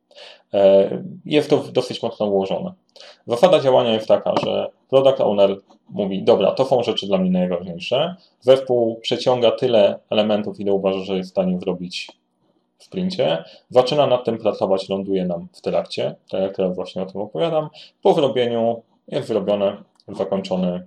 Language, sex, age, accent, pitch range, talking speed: Polish, male, 30-49, native, 95-120 Hz, 150 wpm